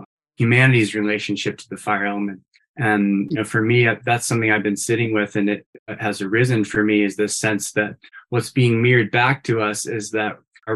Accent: American